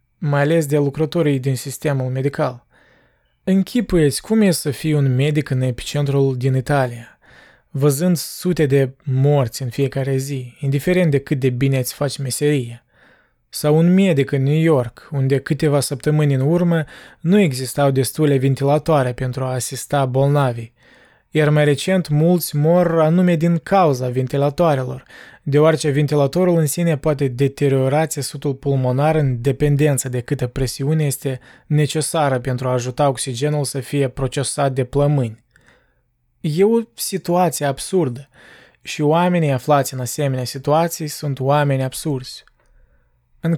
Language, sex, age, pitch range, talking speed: Romanian, male, 20-39, 135-155 Hz, 135 wpm